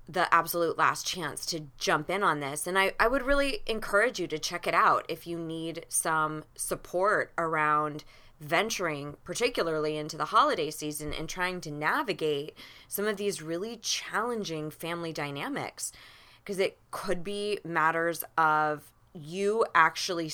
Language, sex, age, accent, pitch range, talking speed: English, female, 20-39, American, 150-185 Hz, 150 wpm